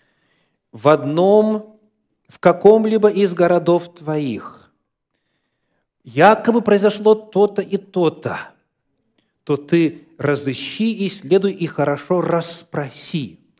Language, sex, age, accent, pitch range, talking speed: Russian, male, 40-59, native, 160-205 Hz, 90 wpm